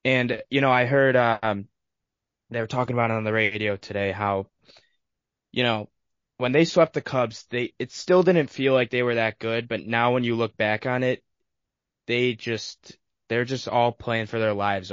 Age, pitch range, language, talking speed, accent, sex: 10-29, 105-125 Hz, English, 200 wpm, American, male